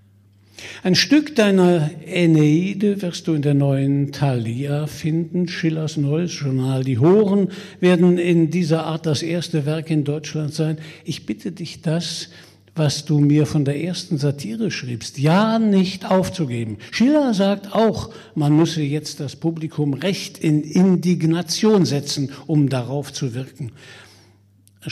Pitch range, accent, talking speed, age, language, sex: 135-175 Hz, German, 140 wpm, 60-79, German, male